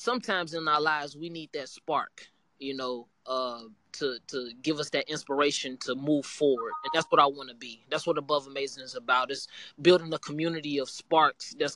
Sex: male